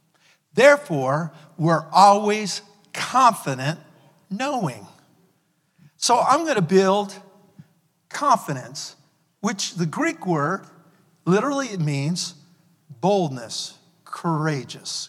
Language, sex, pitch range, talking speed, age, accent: English, male, 155-195 Hz, 80 wpm, 50-69, American